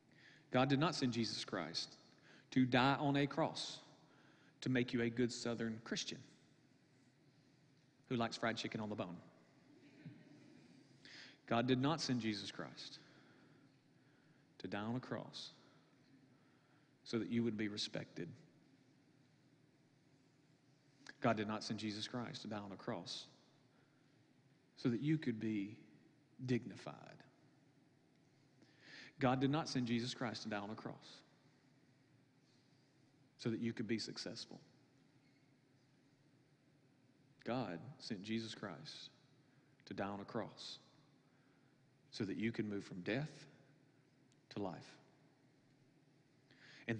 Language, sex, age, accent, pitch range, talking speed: English, male, 40-59, American, 115-140 Hz, 120 wpm